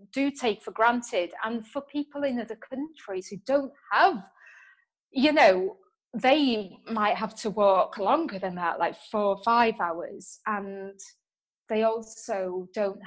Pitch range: 185-220 Hz